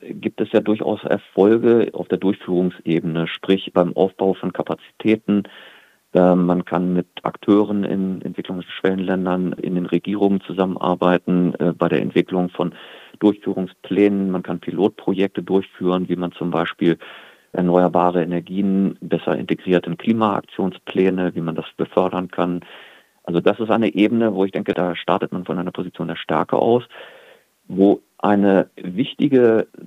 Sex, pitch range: male, 90-100 Hz